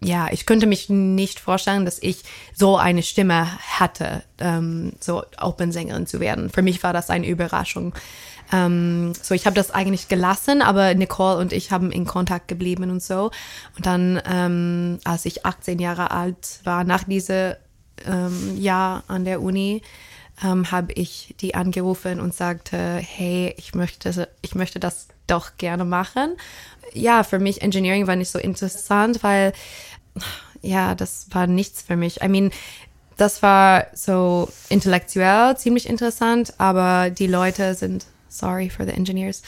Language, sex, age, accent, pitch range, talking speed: German, female, 20-39, German, 180-195 Hz, 155 wpm